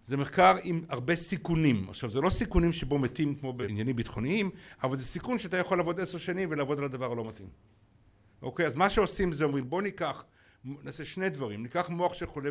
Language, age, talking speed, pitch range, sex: Hebrew, 60-79, 200 wpm, 130-180 Hz, male